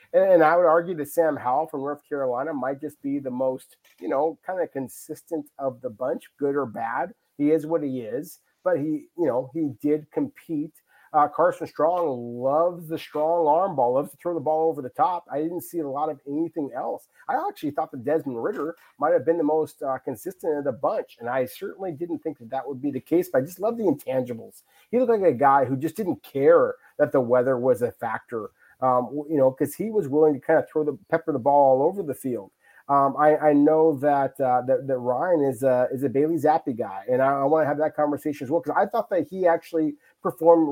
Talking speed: 235 wpm